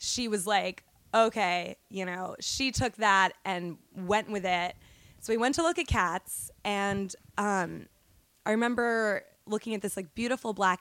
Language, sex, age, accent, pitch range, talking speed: English, female, 20-39, American, 190-230 Hz, 165 wpm